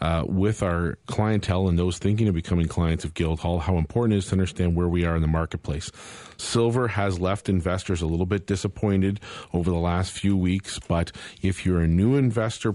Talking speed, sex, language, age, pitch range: 200 wpm, male, English, 40-59, 85-100 Hz